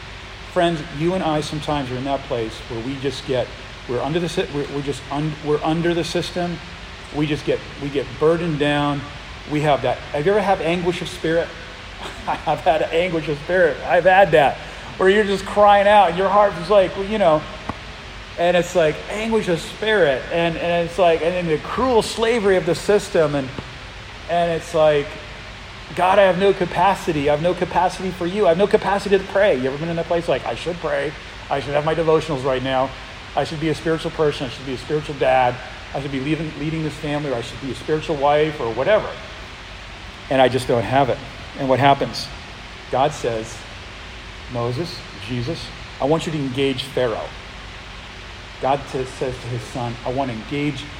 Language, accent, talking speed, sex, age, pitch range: English, American, 200 wpm, male, 40-59, 130-175 Hz